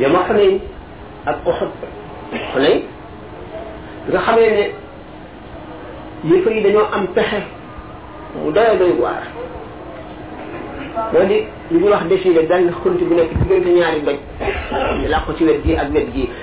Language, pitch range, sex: French, 210-235 Hz, male